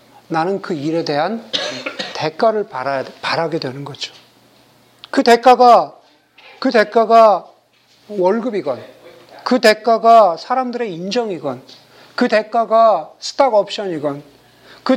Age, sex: 40-59, male